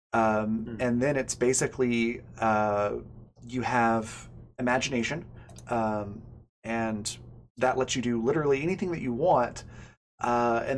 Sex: male